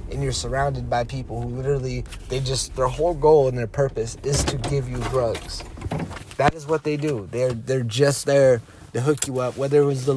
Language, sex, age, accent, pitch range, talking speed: English, male, 20-39, American, 110-130 Hz, 220 wpm